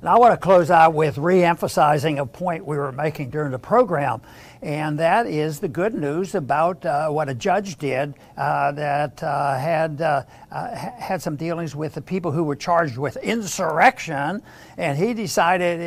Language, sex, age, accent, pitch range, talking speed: English, male, 60-79, American, 160-200 Hz, 180 wpm